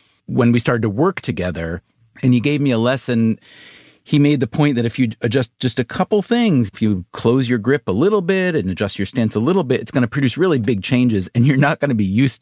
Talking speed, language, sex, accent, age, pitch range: 255 wpm, English, male, American, 40-59, 105-145 Hz